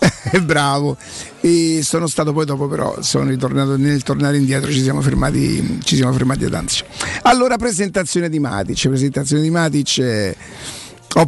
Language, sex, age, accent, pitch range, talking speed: Italian, male, 50-69, native, 140-175 Hz, 150 wpm